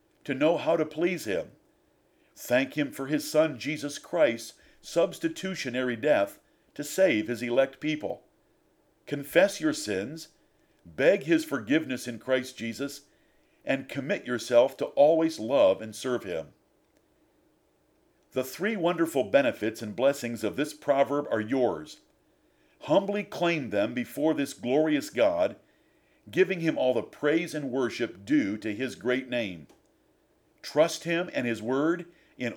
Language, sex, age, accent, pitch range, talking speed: English, male, 50-69, American, 125-175 Hz, 135 wpm